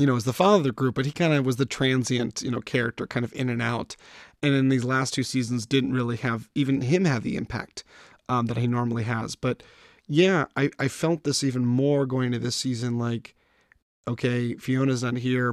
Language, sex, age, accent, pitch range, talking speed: English, male, 30-49, American, 120-140 Hz, 220 wpm